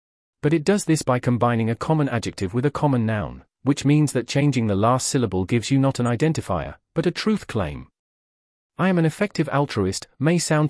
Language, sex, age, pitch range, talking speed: English, male, 40-59, 110-150 Hz, 200 wpm